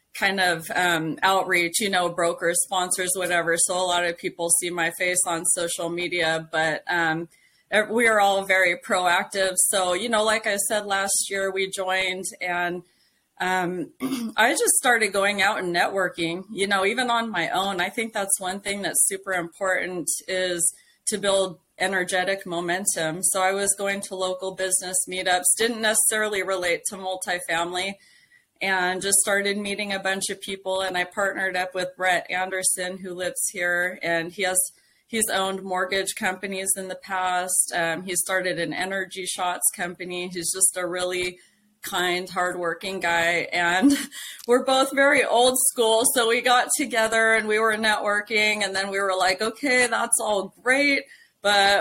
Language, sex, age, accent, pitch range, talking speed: English, female, 20-39, American, 180-215 Hz, 165 wpm